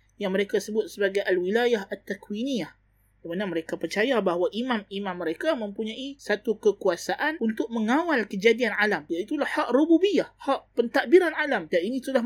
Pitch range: 180-245 Hz